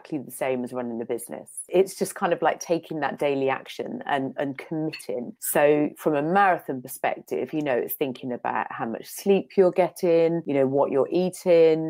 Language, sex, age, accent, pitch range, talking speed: English, female, 30-49, British, 135-170 Hz, 190 wpm